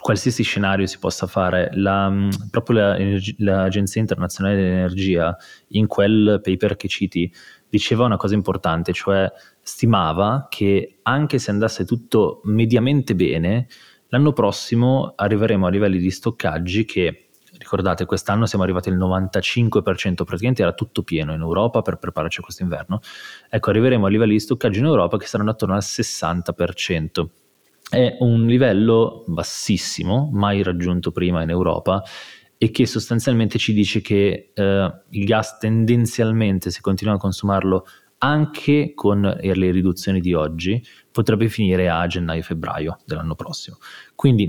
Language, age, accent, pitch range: Italian, 20-39, native, 90-115 Hz